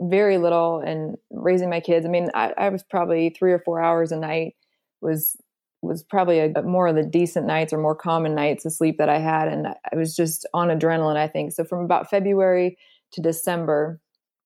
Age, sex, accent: 20-39, female, American